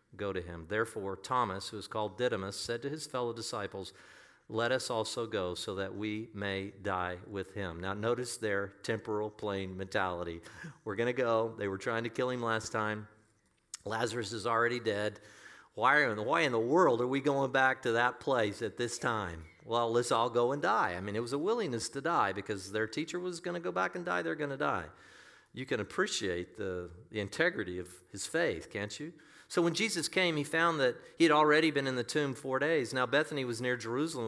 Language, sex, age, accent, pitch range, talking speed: English, male, 50-69, American, 105-145 Hz, 215 wpm